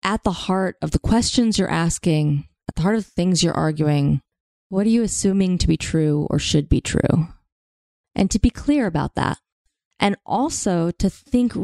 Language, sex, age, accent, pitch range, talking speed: English, female, 20-39, American, 155-195 Hz, 190 wpm